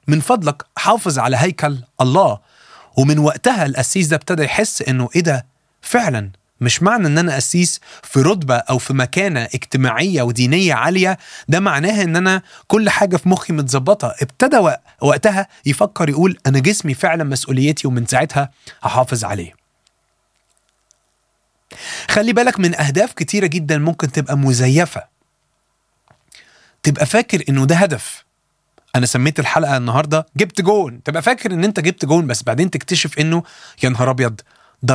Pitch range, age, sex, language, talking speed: 130-180 Hz, 30-49, male, Arabic, 145 wpm